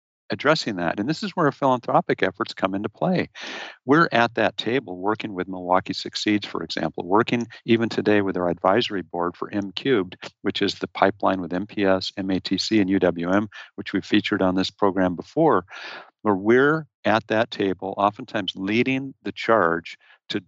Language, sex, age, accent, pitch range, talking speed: English, male, 50-69, American, 95-115 Hz, 170 wpm